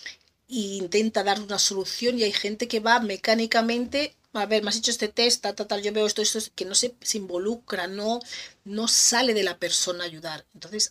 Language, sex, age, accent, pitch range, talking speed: Spanish, female, 40-59, Spanish, 180-215 Hz, 220 wpm